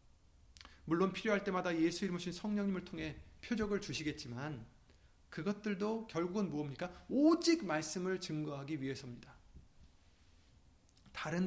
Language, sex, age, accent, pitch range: Korean, male, 30-49, native, 120-185 Hz